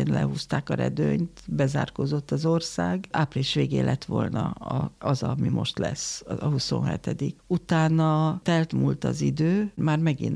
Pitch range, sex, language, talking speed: 135-165 Hz, female, Hungarian, 140 wpm